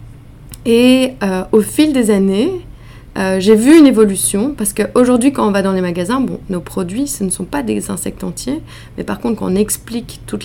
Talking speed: 205 wpm